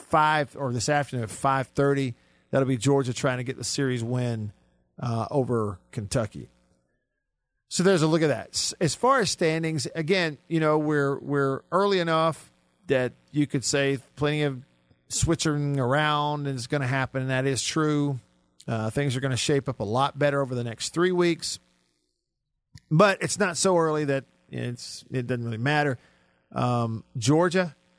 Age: 50-69